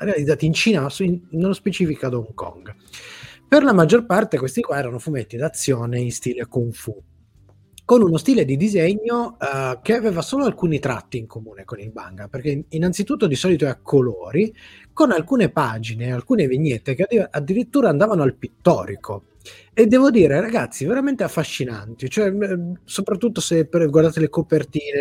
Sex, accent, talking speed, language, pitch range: male, native, 165 wpm, Italian, 125-195 Hz